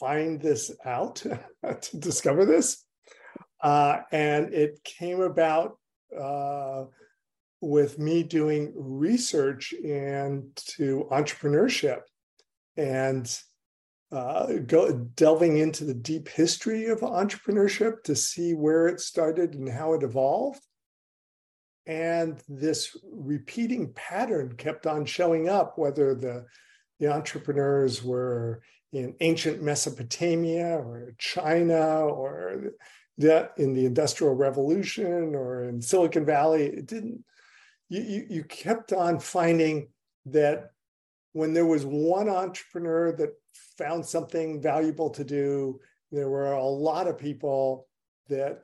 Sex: male